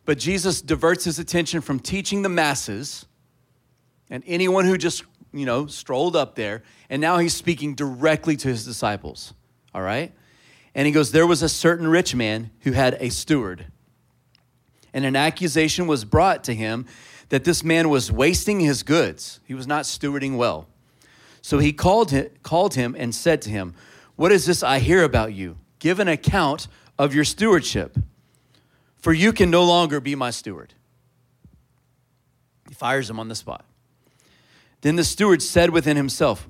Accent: American